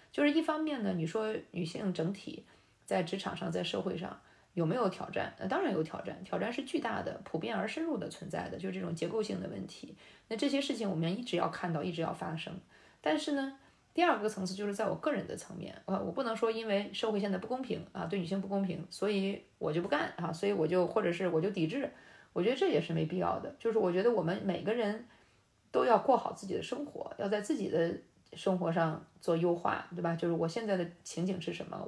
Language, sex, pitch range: Chinese, female, 170-220 Hz